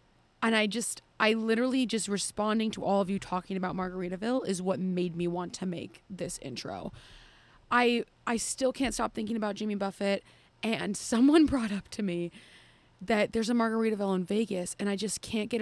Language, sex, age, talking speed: English, female, 20-39, 190 wpm